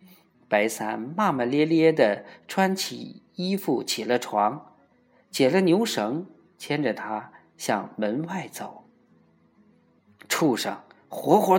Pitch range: 140-225 Hz